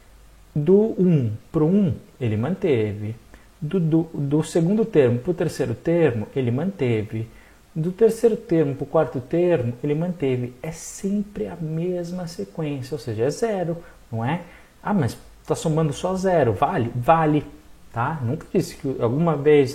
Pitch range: 125-180 Hz